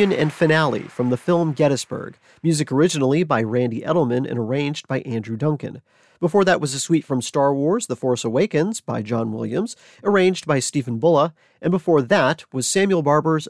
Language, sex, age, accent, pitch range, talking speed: English, male, 40-59, American, 125-170 Hz, 180 wpm